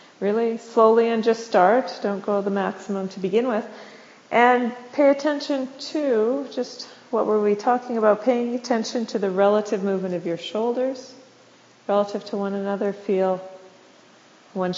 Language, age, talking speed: English, 40-59, 150 wpm